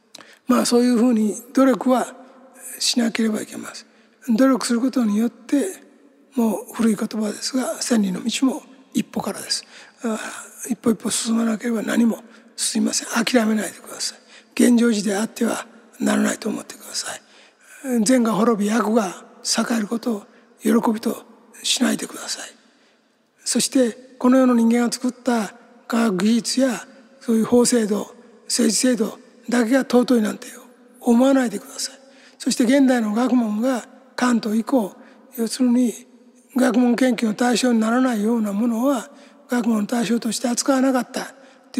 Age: 60-79